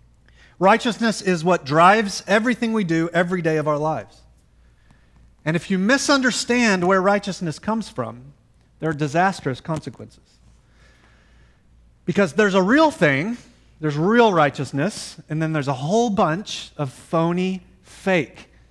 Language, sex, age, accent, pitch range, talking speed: English, male, 30-49, American, 130-195 Hz, 130 wpm